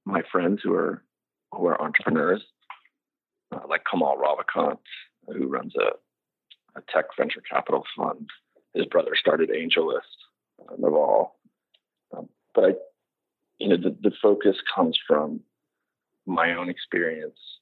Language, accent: English, American